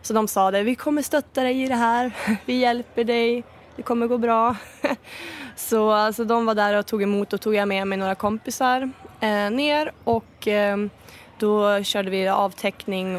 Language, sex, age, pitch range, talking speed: Swedish, female, 20-39, 205-260 Hz, 175 wpm